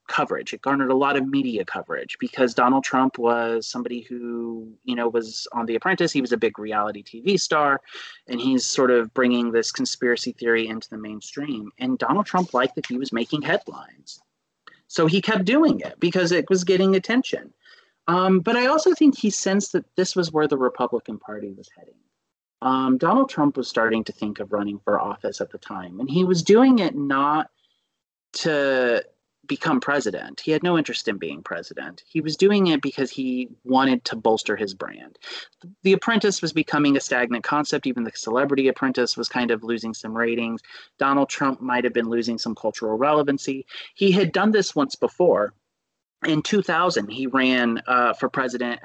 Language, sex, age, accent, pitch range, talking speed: English, male, 30-49, American, 120-175 Hz, 190 wpm